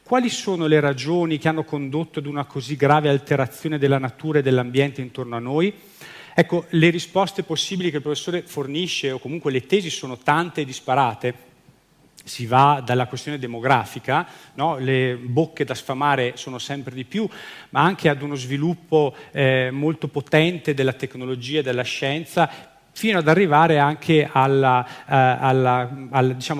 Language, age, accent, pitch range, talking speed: Italian, 40-59, native, 130-160 Hz, 150 wpm